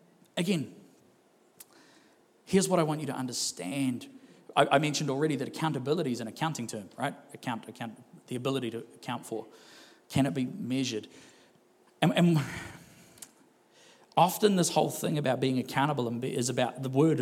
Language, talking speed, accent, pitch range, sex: English, 150 wpm, Australian, 130-160 Hz, male